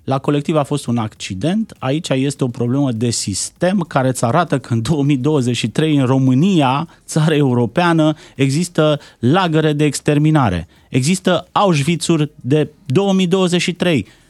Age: 30-49